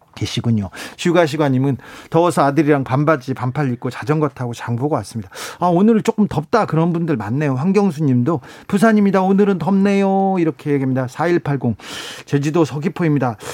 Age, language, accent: 40-59, Korean, native